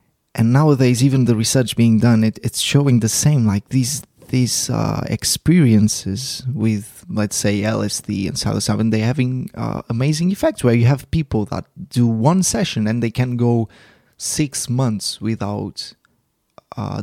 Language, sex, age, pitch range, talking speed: English, male, 20-39, 110-135 Hz, 155 wpm